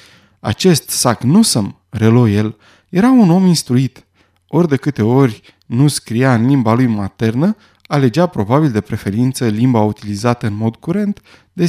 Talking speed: 145 wpm